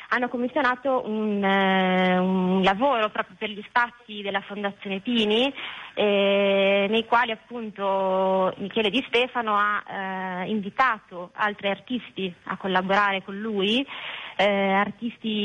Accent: native